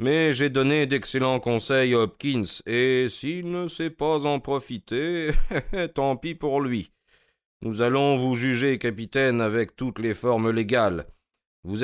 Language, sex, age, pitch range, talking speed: French, male, 40-59, 110-145 Hz, 145 wpm